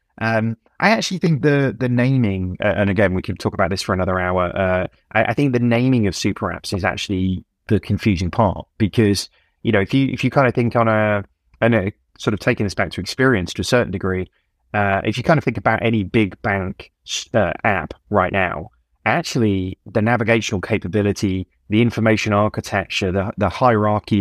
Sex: male